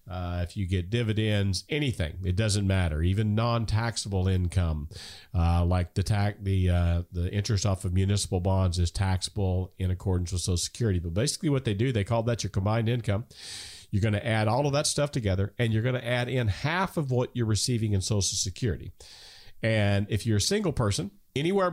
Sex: male